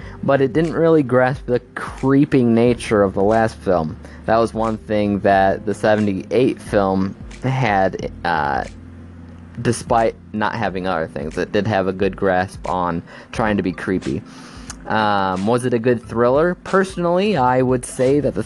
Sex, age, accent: male, 20-39, American